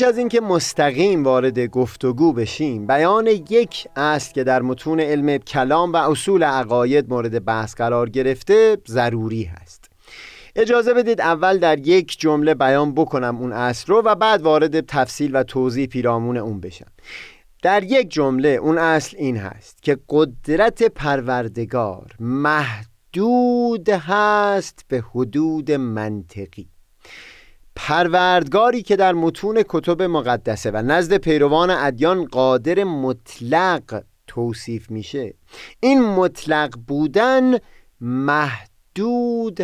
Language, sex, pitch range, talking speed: Persian, male, 120-175 Hz, 115 wpm